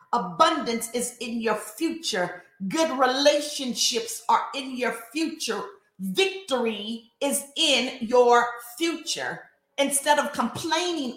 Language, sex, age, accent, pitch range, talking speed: English, female, 40-59, American, 205-285 Hz, 100 wpm